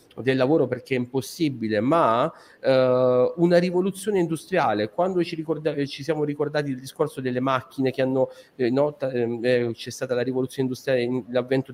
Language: Italian